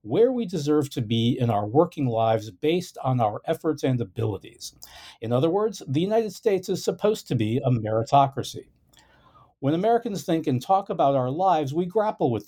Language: English